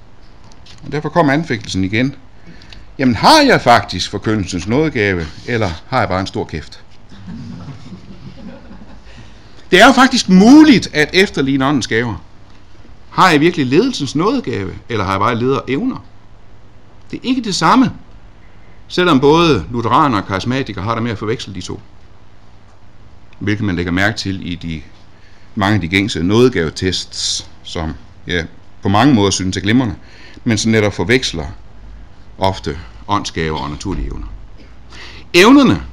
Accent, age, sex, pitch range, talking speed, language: native, 60-79, male, 95-130 Hz, 140 wpm, Danish